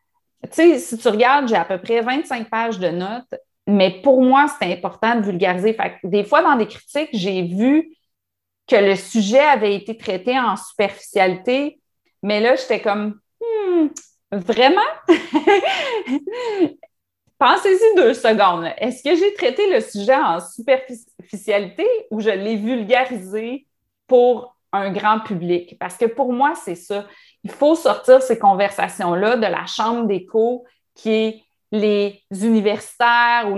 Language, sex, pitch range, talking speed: French, female, 205-280 Hz, 150 wpm